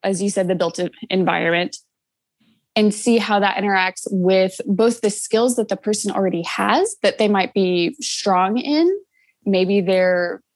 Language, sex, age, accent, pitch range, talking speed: English, female, 20-39, American, 180-215 Hz, 160 wpm